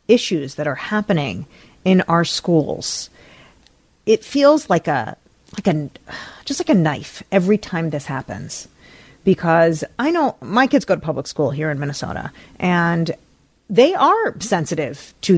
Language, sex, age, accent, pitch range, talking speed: English, female, 40-59, American, 165-205 Hz, 150 wpm